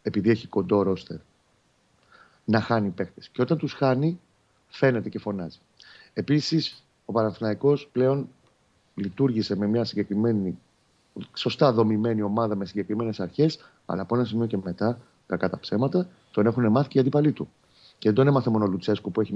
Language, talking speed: Greek, 160 wpm